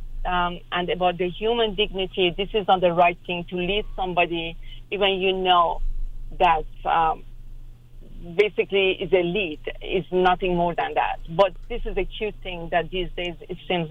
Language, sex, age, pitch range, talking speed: English, female, 50-69, 155-210 Hz, 175 wpm